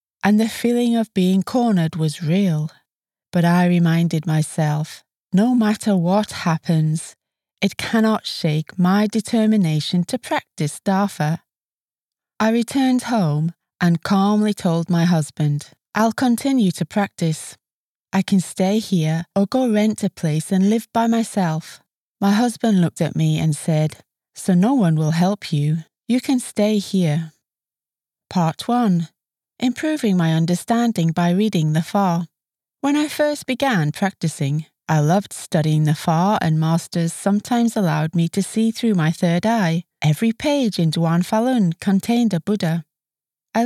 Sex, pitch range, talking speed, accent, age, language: female, 160-215 Hz, 145 wpm, British, 30-49, English